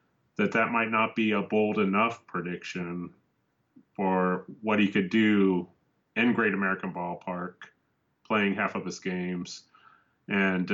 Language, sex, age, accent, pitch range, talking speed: English, male, 30-49, American, 95-115 Hz, 135 wpm